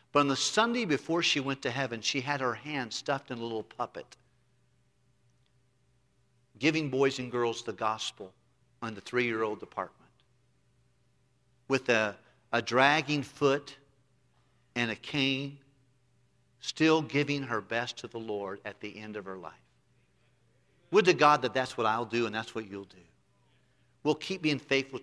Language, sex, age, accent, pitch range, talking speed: English, male, 50-69, American, 110-130 Hz, 160 wpm